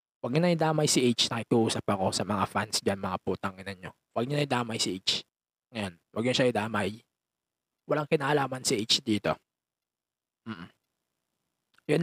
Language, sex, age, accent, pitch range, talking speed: English, male, 20-39, Filipino, 95-160 Hz, 170 wpm